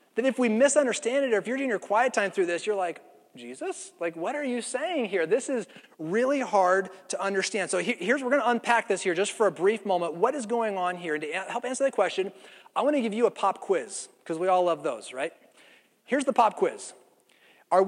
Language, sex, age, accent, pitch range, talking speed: English, male, 30-49, American, 180-255 Hz, 240 wpm